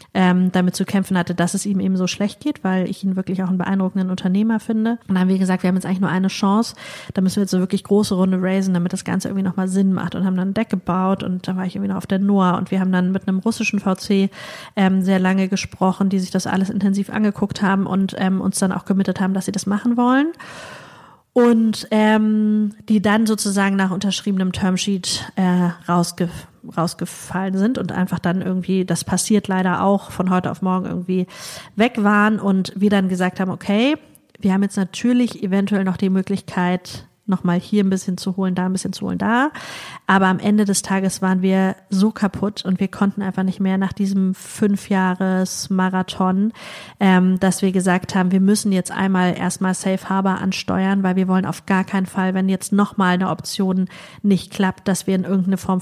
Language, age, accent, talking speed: German, 30-49, German, 215 wpm